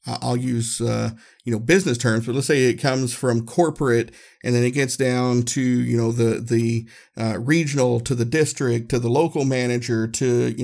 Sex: male